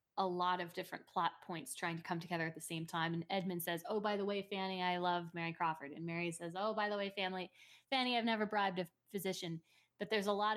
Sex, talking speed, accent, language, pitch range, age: female, 250 wpm, American, English, 180-220 Hz, 20-39